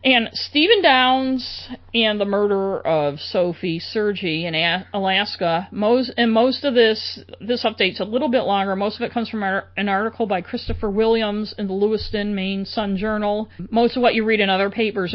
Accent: American